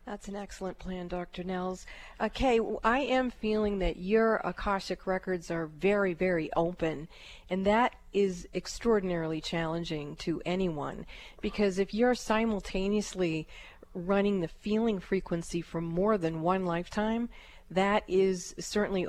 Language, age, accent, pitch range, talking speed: English, 40-59, American, 175-210 Hz, 130 wpm